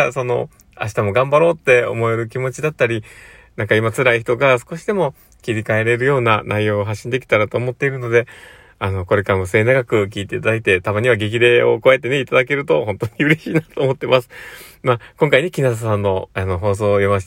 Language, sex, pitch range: Japanese, male, 100-135 Hz